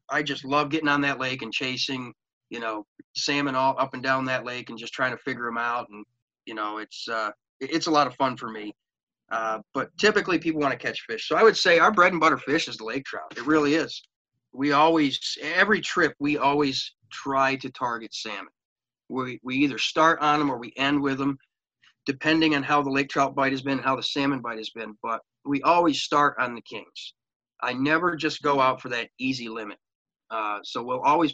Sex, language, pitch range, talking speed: male, English, 125-150 Hz, 225 wpm